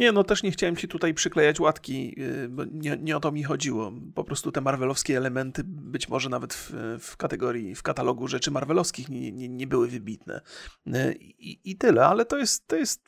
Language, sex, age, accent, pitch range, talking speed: Polish, male, 30-49, native, 135-180 Hz, 200 wpm